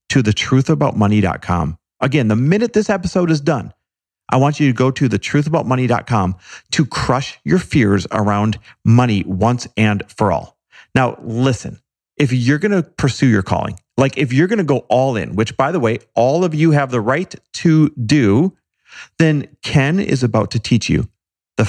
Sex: male